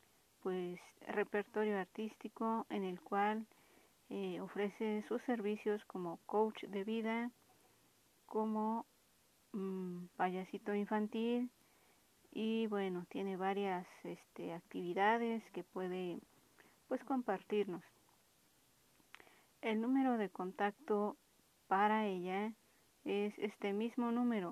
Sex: female